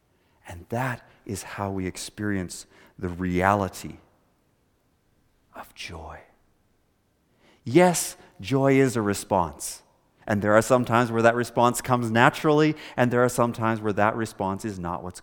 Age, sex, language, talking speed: 40-59, male, English, 140 wpm